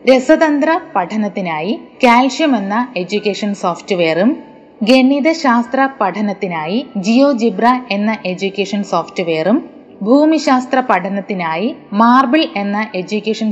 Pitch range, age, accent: 195-265 Hz, 20-39, native